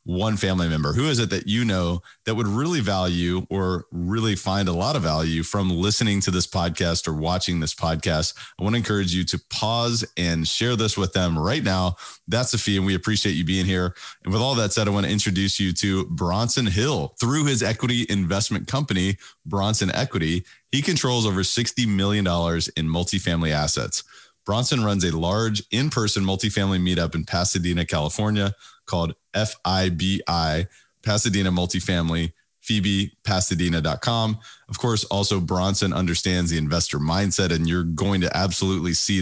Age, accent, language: 30-49, American, English